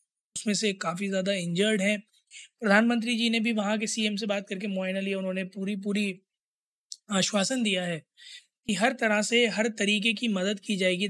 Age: 20-39